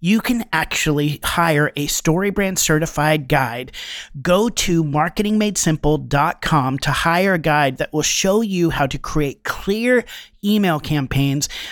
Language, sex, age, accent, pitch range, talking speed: English, male, 30-49, American, 140-175 Hz, 130 wpm